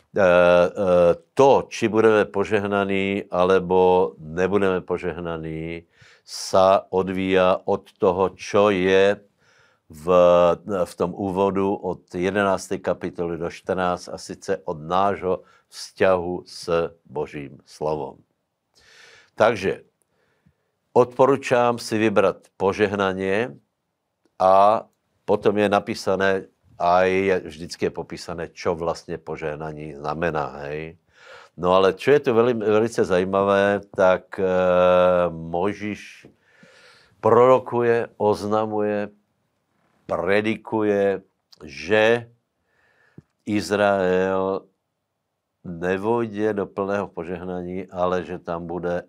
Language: Slovak